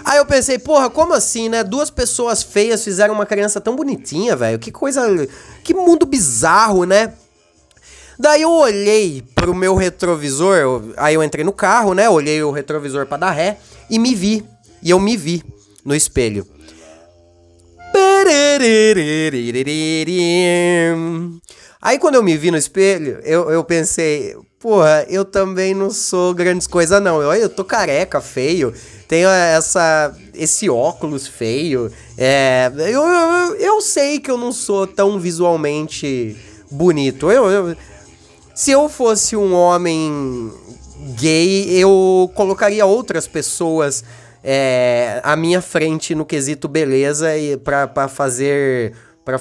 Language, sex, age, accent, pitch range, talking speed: Portuguese, male, 20-39, Brazilian, 140-205 Hz, 135 wpm